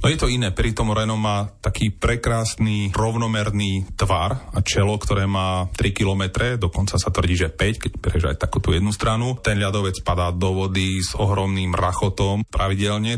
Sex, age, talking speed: male, 30-49, 170 wpm